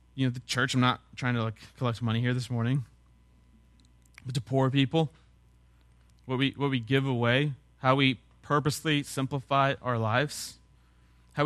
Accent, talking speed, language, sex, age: American, 160 wpm, English, male, 30-49